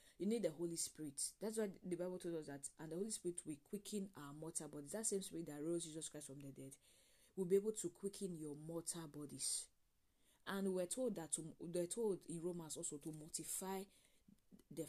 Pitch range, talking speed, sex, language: 150-180 Hz, 215 wpm, female, English